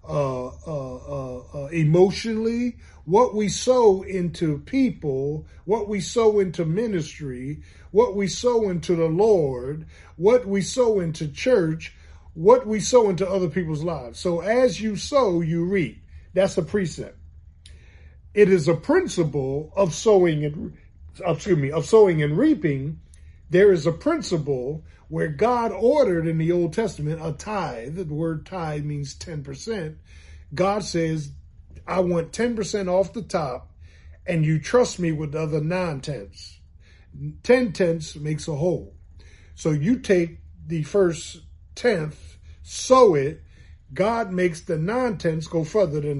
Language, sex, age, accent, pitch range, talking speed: English, male, 40-59, American, 125-195 Hz, 140 wpm